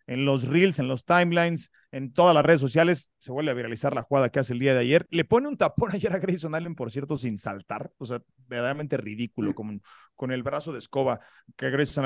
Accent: Mexican